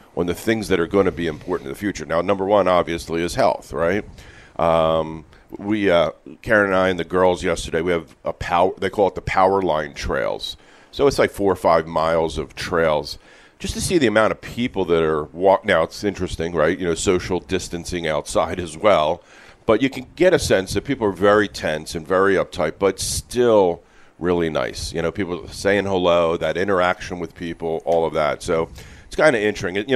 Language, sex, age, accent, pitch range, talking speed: English, male, 50-69, American, 85-100 Hz, 210 wpm